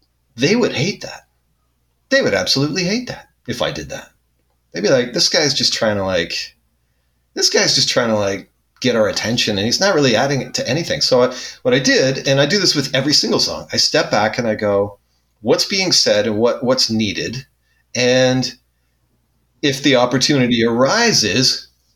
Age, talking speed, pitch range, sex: 30-49, 190 wpm, 80-135 Hz, male